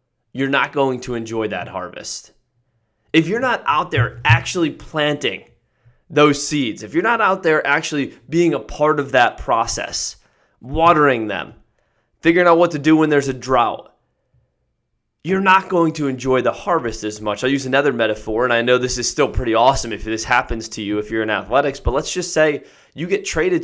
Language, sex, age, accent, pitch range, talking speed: English, male, 20-39, American, 115-160 Hz, 195 wpm